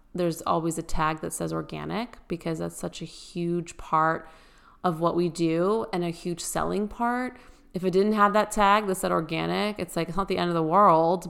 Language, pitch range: English, 165-195 Hz